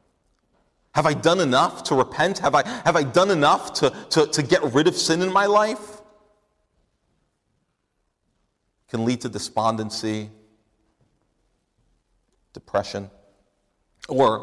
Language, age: English, 40-59